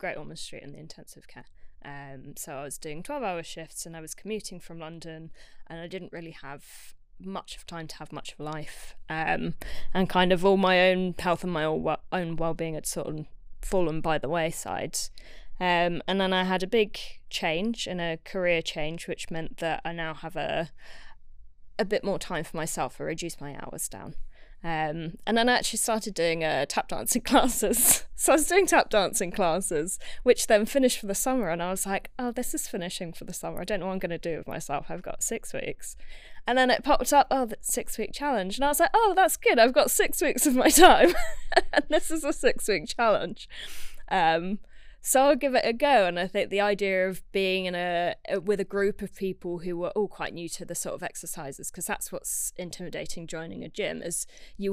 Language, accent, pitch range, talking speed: English, British, 165-215 Hz, 220 wpm